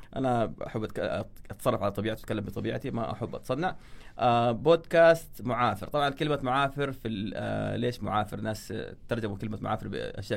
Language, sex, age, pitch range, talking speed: Arabic, male, 30-49, 105-130 Hz, 145 wpm